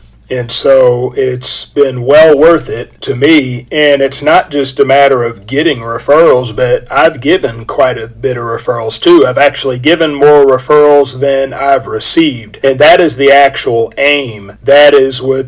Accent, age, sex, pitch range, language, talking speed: American, 40-59, male, 125-145 Hz, English, 170 wpm